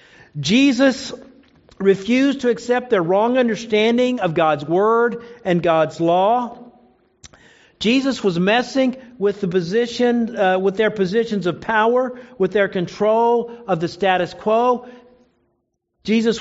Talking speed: 120 wpm